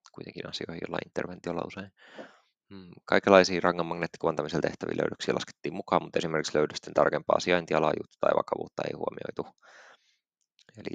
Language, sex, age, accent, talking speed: Finnish, male, 20-39, native, 120 wpm